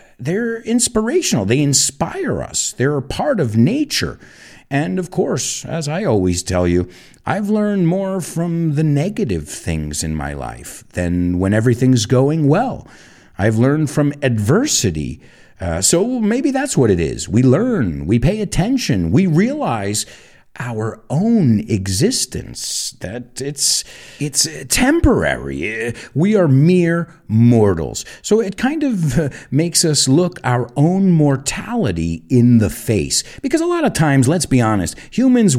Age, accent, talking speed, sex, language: 50-69, American, 140 wpm, male, English